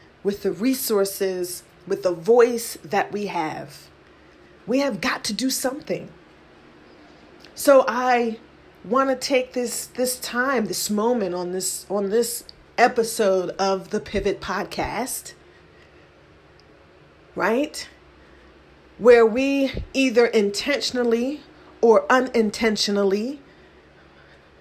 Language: English